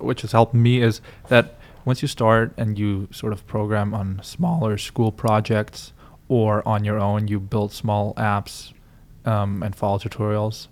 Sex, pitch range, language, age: male, 105-115 Hz, English, 20-39